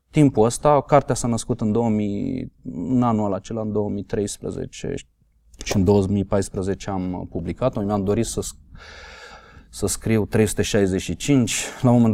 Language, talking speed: Romanian, 130 wpm